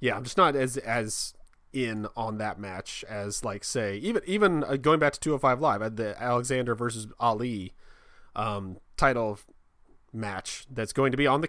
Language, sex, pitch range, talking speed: English, male, 105-135 Hz, 180 wpm